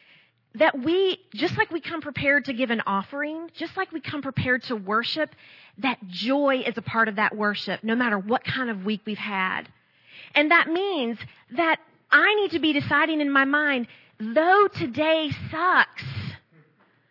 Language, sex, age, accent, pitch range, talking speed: English, female, 40-59, American, 235-330 Hz, 170 wpm